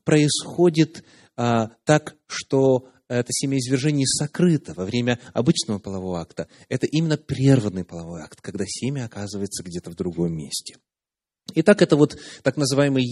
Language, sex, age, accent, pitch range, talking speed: Russian, male, 30-49, native, 105-150 Hz, 135 wpm